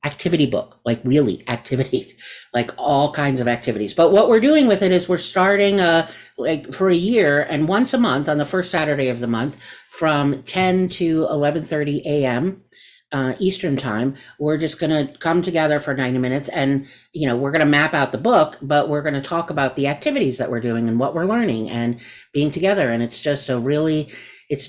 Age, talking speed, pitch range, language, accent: 50-69, 210 wpm, 130-175 Hz, English, American